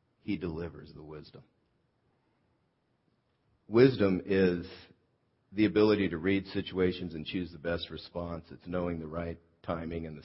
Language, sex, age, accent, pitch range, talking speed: English, male, 50-69, American, 85-105 Hz, 135 wpm